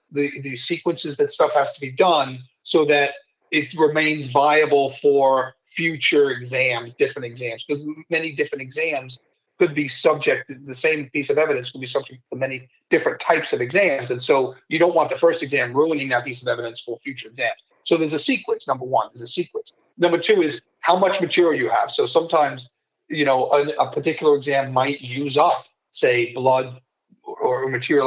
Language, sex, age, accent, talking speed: English, male, 40-59, American, 190 wpm